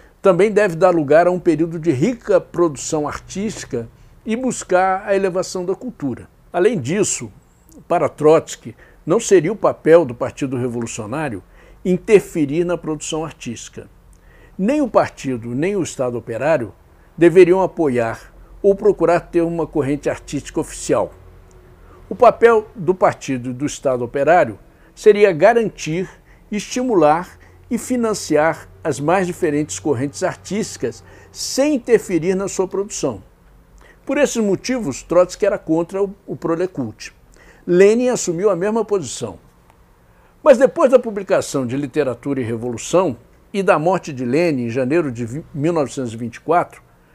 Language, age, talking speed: Portuguese, 60-79, 130 wpm